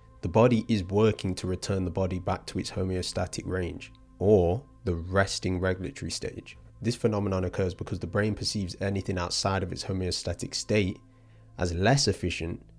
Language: English